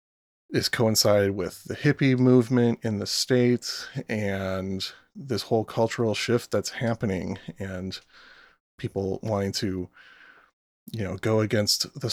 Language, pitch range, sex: English, 100-120 Hz, male